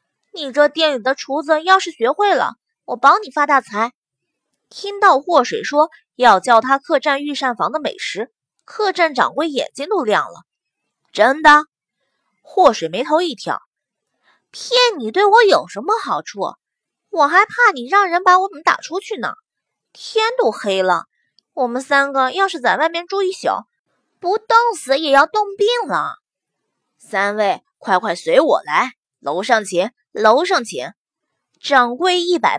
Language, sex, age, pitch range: Chinese, female, 20-39, 255-370 Hz